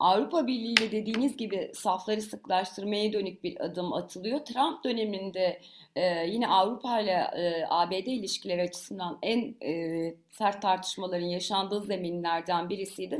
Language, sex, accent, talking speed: Turkish, female, native, 120 wpm